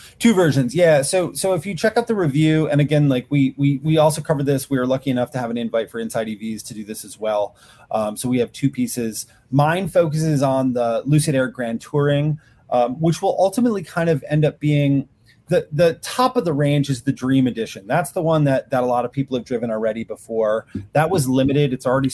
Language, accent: English, American